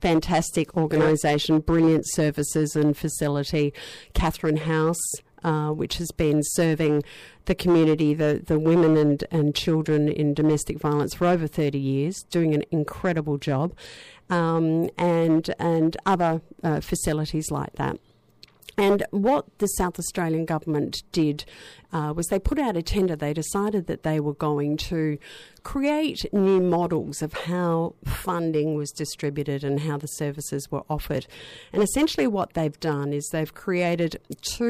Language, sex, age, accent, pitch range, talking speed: English, female, 50-69, Australian, 150-170 Hz, 145 wpm